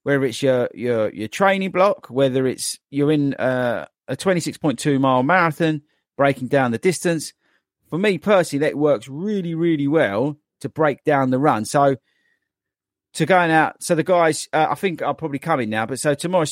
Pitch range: 120-170 Hz